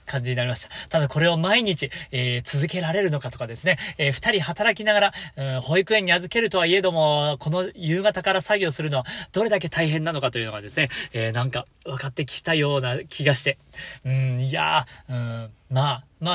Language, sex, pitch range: Japanese, male, 125-190 Hz